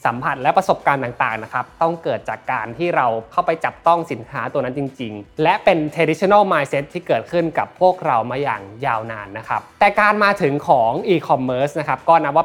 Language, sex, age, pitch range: Thai, male, 20-39, 125-170 Hz